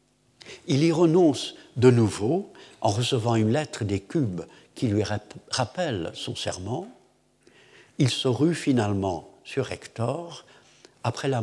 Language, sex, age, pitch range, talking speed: French, male, 60-79, 115-155 Hz, 125 wpm